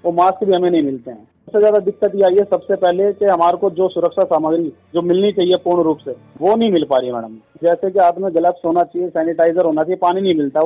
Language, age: Hindi, 40-59